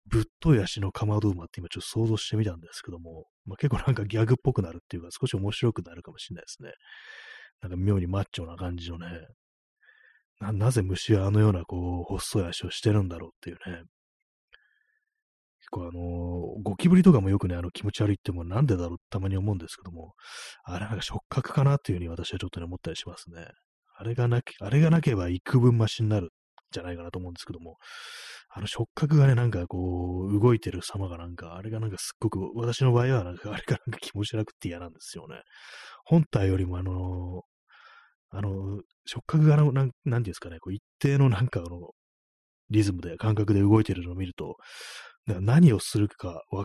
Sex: male